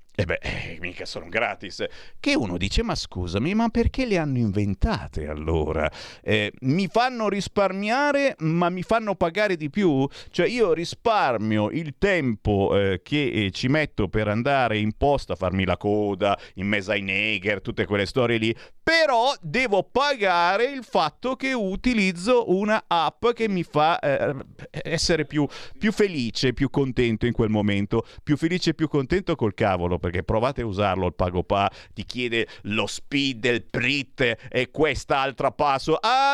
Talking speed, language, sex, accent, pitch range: 160 wpm, Italian, male, native, 105-165 Hz